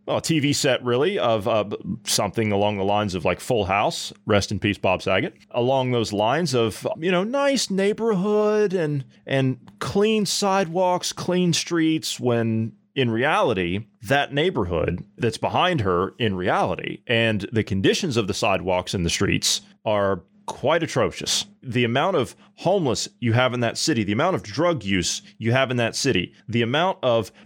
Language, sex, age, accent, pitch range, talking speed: English, male, 30-49, American, 105-160 Hz, 170 wpm